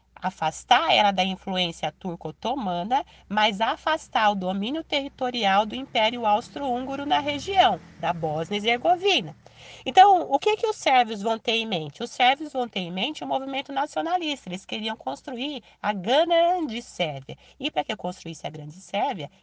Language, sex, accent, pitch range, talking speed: Portuguese, female, Brazilian, 195-315 Hz, 160 wpm